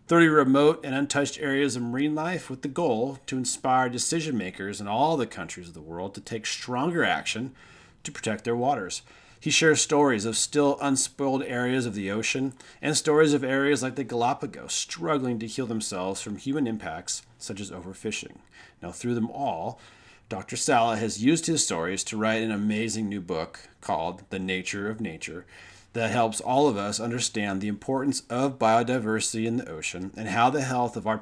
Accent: American